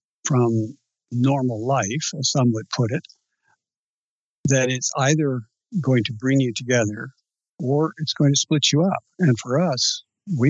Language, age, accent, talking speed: English, 60-79, American, 155 wpm